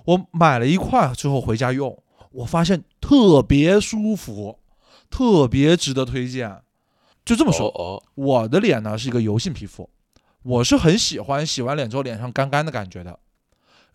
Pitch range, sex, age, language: 125-180 Hz, male, 20-39, Chinese